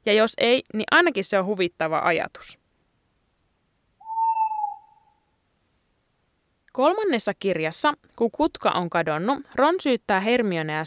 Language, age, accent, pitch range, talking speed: Finnish, 20-39, native, 180-270 Hz, 100 wpm